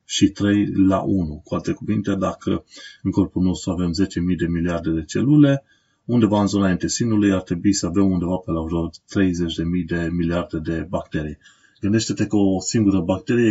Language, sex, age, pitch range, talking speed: Romanian, male, 30-49, 90-105 Hz, 175 wpm